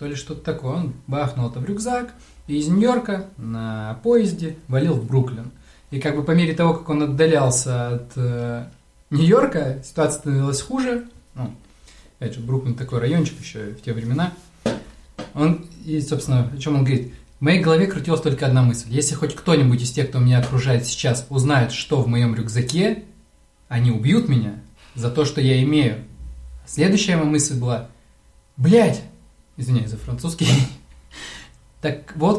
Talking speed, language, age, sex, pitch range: 160 wpm, Russian, 20-39, male, 120-150 Hz